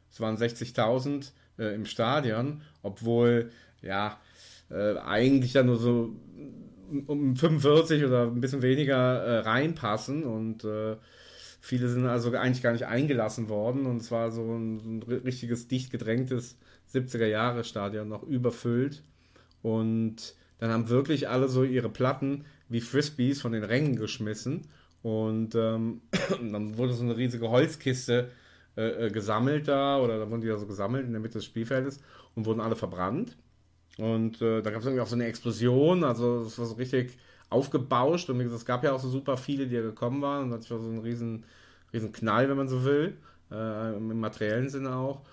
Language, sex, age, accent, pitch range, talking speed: German, male, 30-49, German, 115-130 Hz, 175 wpm